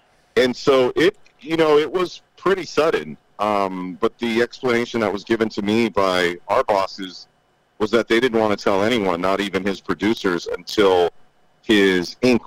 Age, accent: 50-69, American